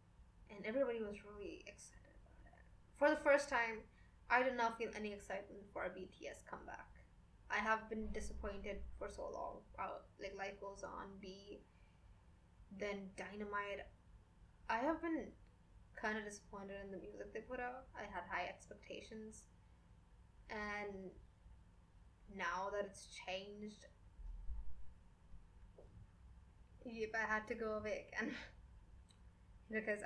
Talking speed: 130 wpm